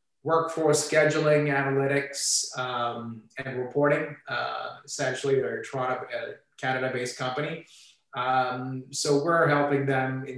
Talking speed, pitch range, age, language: 110 wpm, 125-140 Hz, 30-49, English